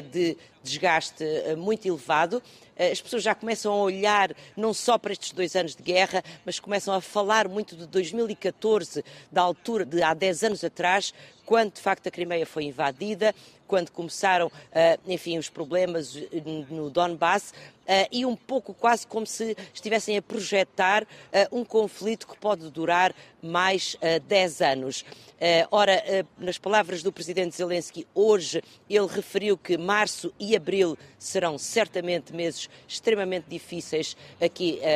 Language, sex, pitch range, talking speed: Portuguese, female, 170-210 Hz, 140 wpm